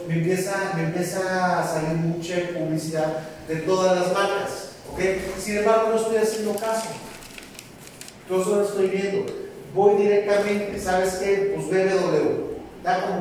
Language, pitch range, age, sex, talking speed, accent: Spanish, 175-200 Hz, 40-59, male, 140 wpm, Mexican